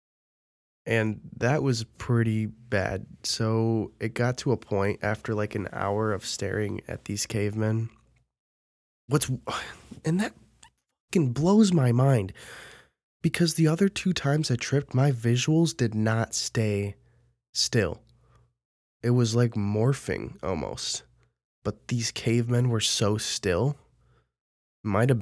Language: English